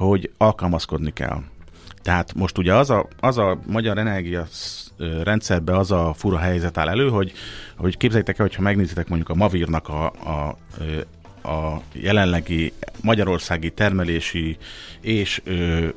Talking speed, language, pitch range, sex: 130 wpm, Hungarian, 85-105 Hz, male